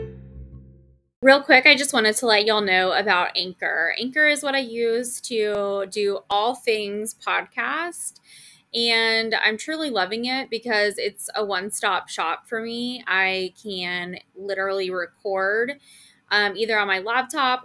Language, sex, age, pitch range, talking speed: English, female, 20-39, 195-240 Hz, 145 wpm